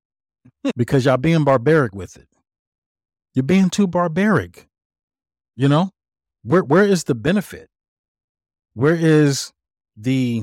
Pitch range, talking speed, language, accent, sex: 90-135 Hz, 115 wpm, English, American, male